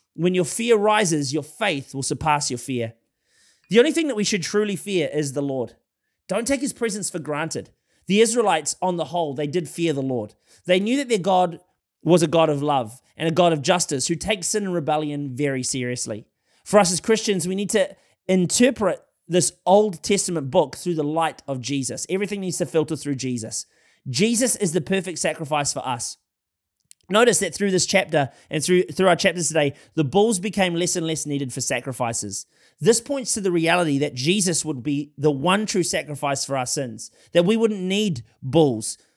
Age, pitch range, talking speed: 20-39, 145-195 Hz, 200 wpm